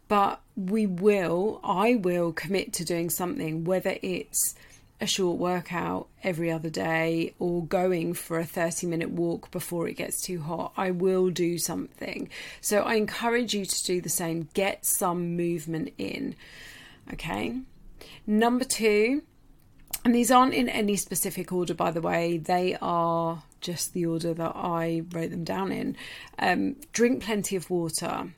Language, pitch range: English, 170-195 Hz